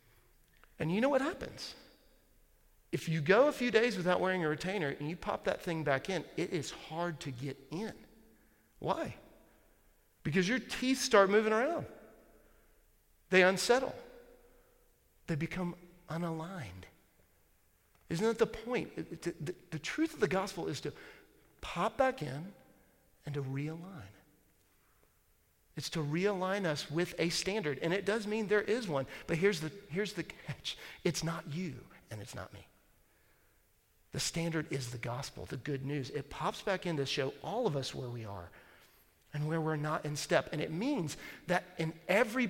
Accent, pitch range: American, 140-205 Hz